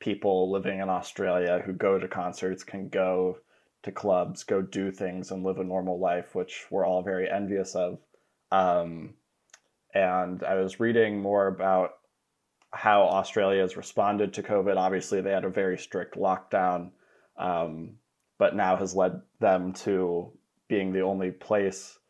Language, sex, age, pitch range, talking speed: English, male, 20-39, 90-100 Hz, 155 wpm